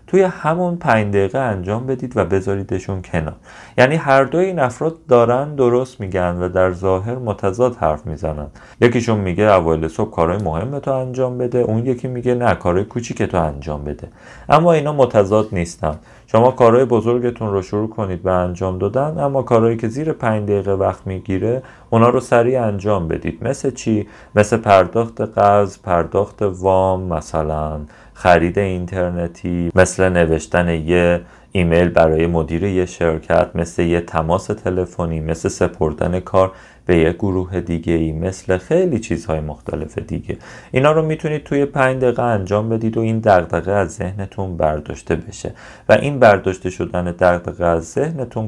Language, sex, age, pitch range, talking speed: Persian, male, 40-59, 85-120 Hz, 150 wpm